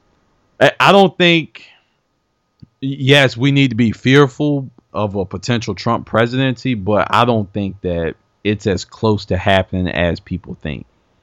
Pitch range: 95-125 Hz